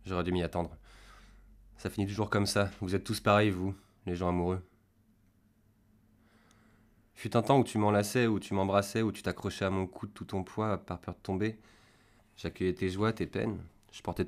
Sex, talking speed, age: male, 200 wpm, 20-39